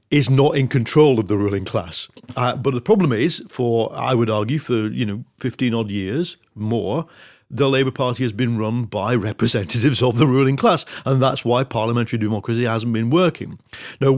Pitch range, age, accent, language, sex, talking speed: 110-150 Hz, 50-69, British, English, male, 185 wpm